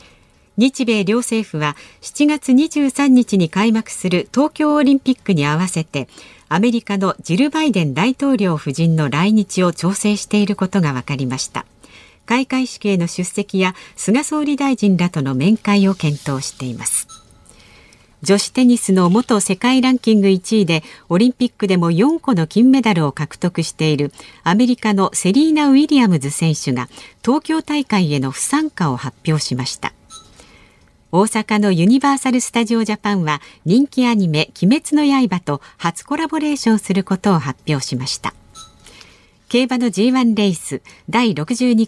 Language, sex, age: Japanese, female, 50-69